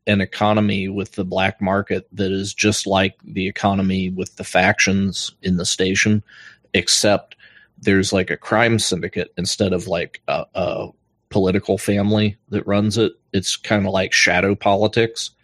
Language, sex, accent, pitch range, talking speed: English, male, American, 95-105 Hz, 155 wpm